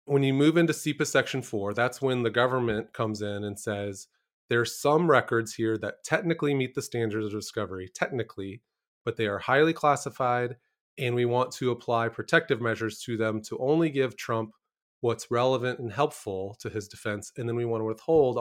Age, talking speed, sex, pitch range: 30-49, 190 wpm, male, 110-140 Hz